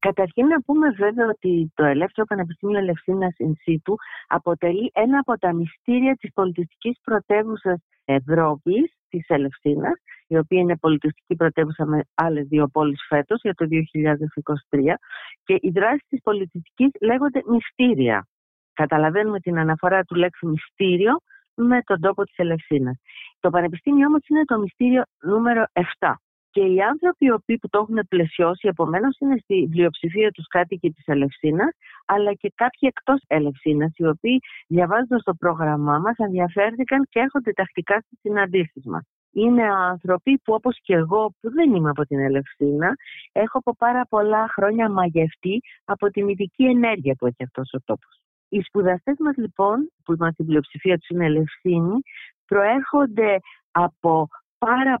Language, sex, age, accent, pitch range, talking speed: Greek, female, 40-59, native, 165-230 Hz, 150 wpm